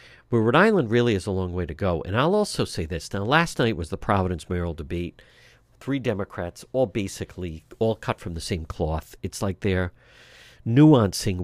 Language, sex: English, male